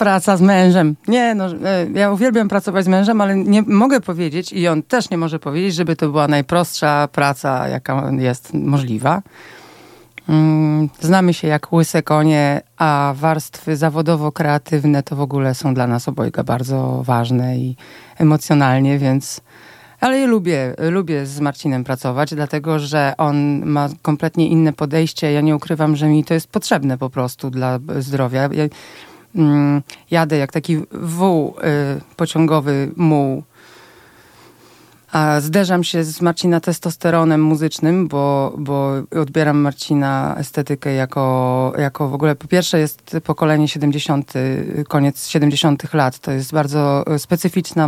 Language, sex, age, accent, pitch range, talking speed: Polish, female, 40-59, native, 140-170 Hz, 140 wpm